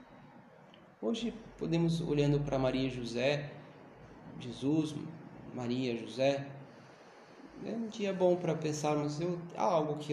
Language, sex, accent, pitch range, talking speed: Portuguese, male, Brazilian, 130-155 Hz, 120 wpm